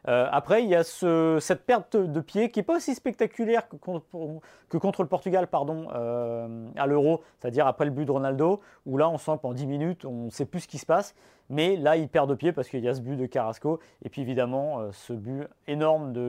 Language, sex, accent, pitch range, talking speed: French, male, French, 135-175 Hz, 255 wpm